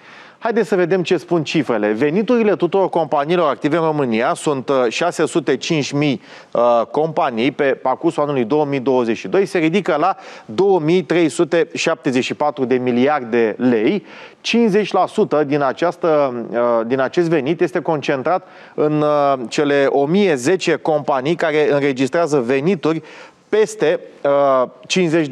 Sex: male